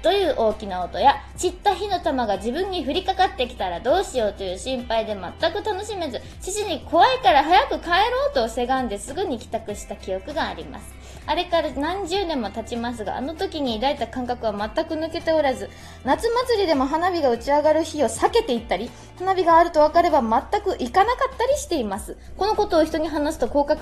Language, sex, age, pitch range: Japanese, female, 20-39, 230-345 Hz